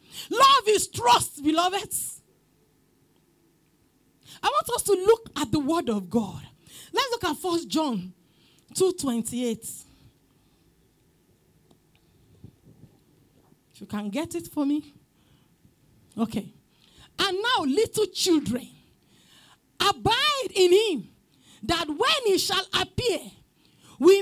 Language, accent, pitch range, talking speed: English, Nigerian, 255-405 Hz, 100 wpm